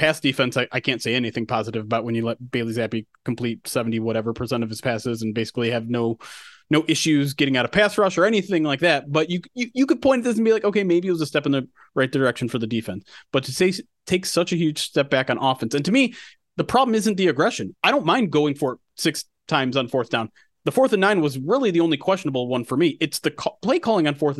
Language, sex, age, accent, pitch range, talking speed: English, male, 30-49, American, 140-200 Hz, 270 wpm